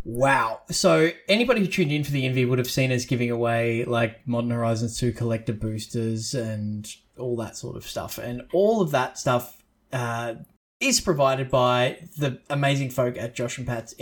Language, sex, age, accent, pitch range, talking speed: English, male, 20-39, Australian, 120-140 Hz, 185 wpm